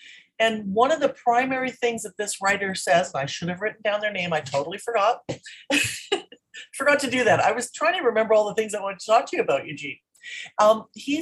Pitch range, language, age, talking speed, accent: 165-235 Hz, English, 40-59, 230 wpm, American